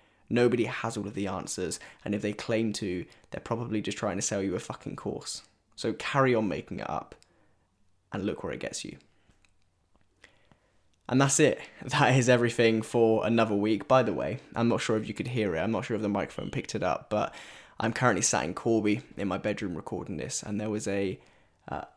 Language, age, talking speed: English, 10-29, 215 wpm